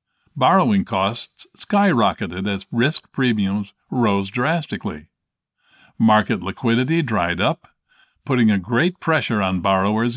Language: English